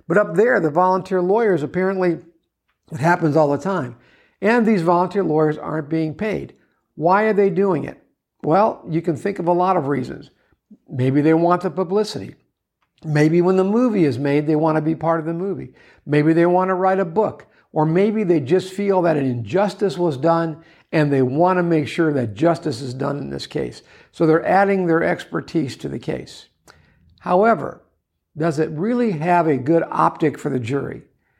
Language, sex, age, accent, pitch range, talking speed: English, male, 60-79, American, 150-185 Hz, 195 wpm